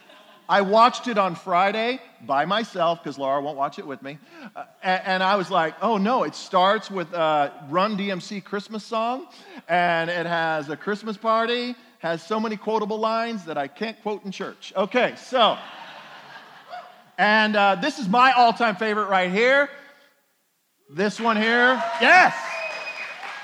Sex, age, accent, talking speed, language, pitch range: male, 40-59, American, 160 wpm, English, 160-225 Hz